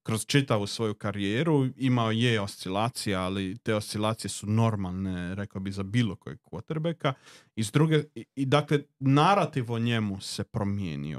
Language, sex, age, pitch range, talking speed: Croatian, male, 40-59, 105-135 Hz, 145 wpm